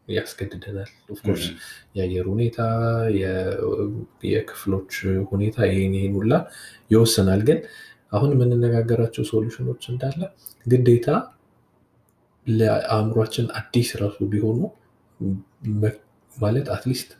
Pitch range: 95-115 Hz